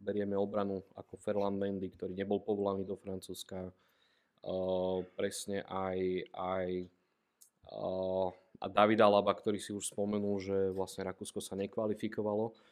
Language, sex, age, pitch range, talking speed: Slovak, male, 20-39, 95-105 Hz, 125 wpm